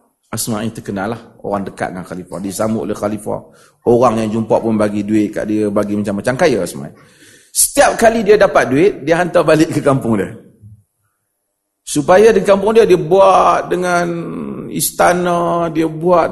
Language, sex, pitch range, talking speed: Malay, male, 105-175 Hz, 160 wpm